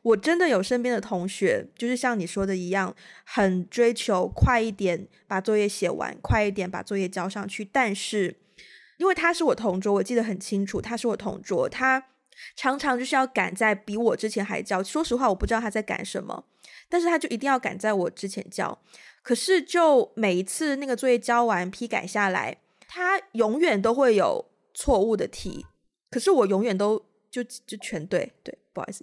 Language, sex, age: Chinese, female, 20-39